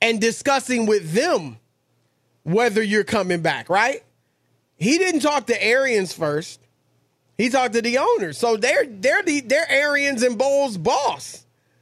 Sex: male